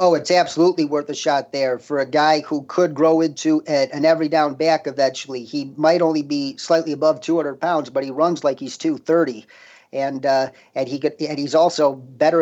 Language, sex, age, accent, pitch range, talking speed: English, male, 40-59, American, 140-175 Hz, 210 wpm